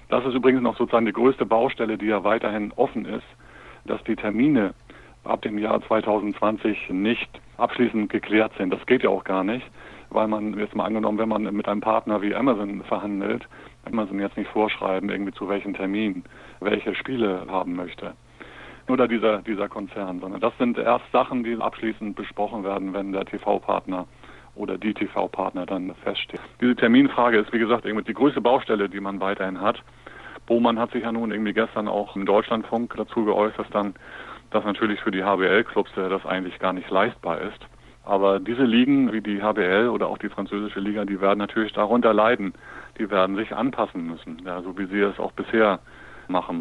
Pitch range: 100-115 Hz